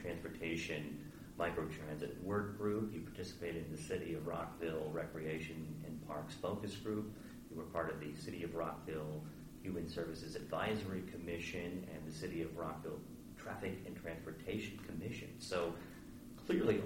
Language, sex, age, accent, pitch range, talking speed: English, male, 40-59, American, 80-95 Hz, 140 wpm